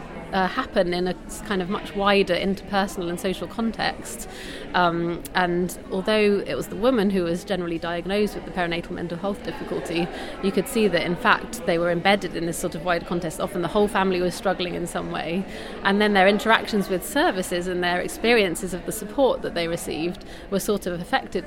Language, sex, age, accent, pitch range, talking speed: English, female, 30-49, British, 175-195 Hz, 200 wpm